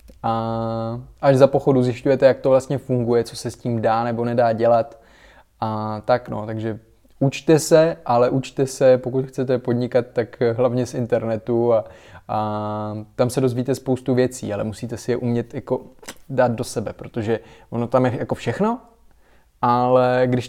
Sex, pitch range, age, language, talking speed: male, 115-140 Hz, 20-39, Czech, 165 wpm